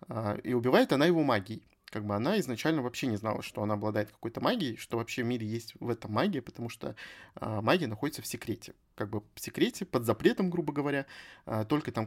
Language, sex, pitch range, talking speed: Russian, male, 110-145 Hz, 200 wpm